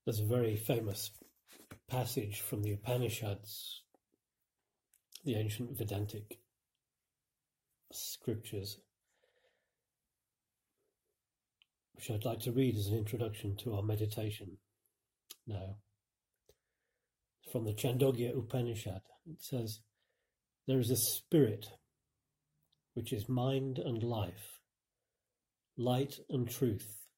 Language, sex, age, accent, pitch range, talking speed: English, male, 40-59, British, 105-130 Hz, 95 wpm